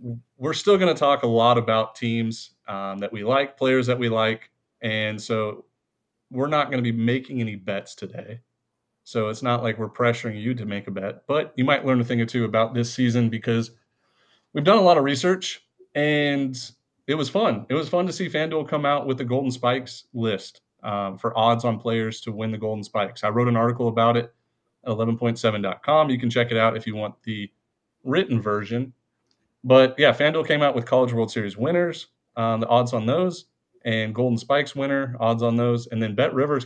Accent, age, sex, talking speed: American, 30-49, male, 210 wpm